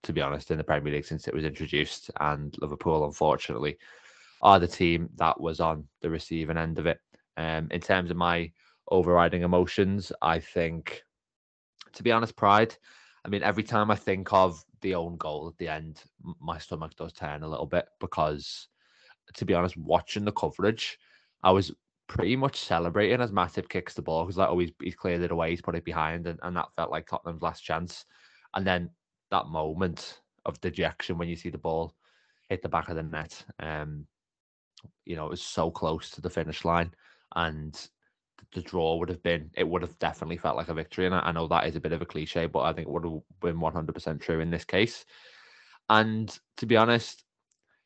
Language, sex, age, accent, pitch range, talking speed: English, male, 20-39, British, 80-95 Hz, 200 wpm